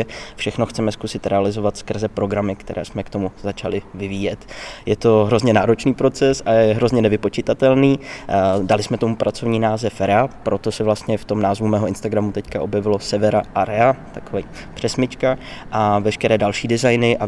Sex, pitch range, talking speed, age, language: male, 100-115 Hz, 160 wpm, 20-39, Czech